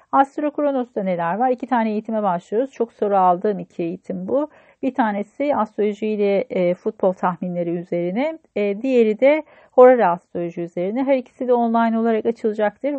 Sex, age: female, 40-59